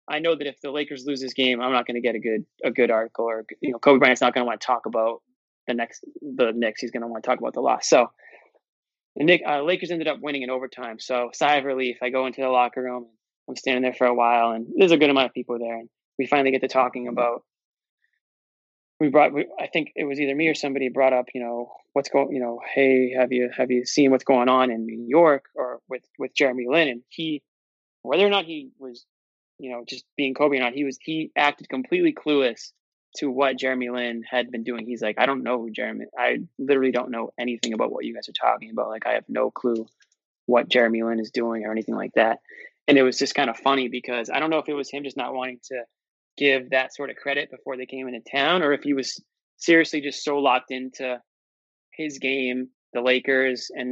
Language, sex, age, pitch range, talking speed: English, male, 20-39, 120-140 Hz, 250 wpm